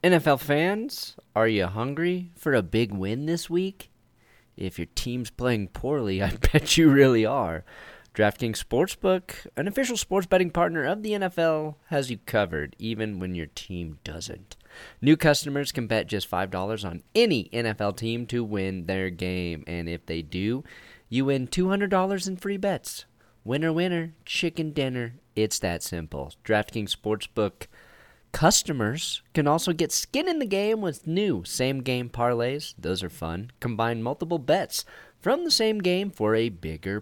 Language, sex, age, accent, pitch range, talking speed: English, male, 30-49, American, 105-165 Hz, 155 wpm